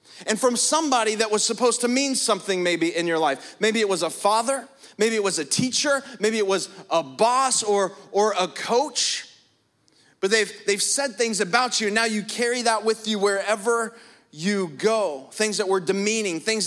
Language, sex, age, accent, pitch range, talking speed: English, male, 30-49, American, 190-235 Hz, 195 wpm